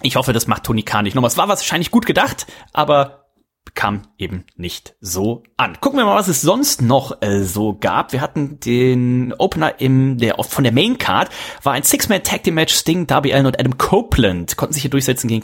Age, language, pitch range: 30-49, German, 115-150 Hz